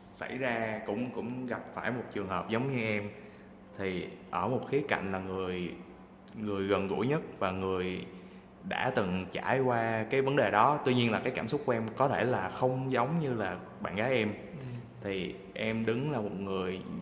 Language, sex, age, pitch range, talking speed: Vietnamese, male, 20-39, 95-130 Hz, 200 wpm